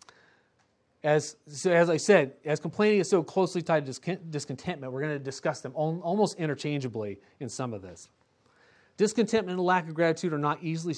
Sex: male